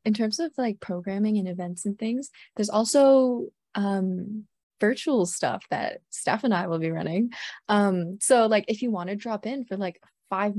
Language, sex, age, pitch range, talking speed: English, female, 20-39, 185-230 Hz, 180 wpm